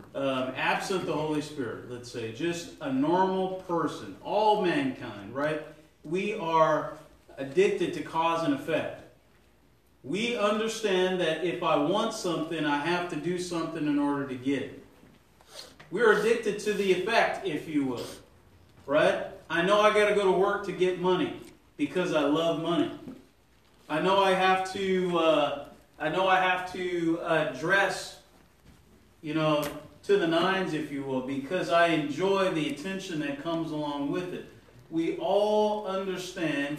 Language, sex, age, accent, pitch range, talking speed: English, male, 40-59, American, 155-200 Hz, 155 wpm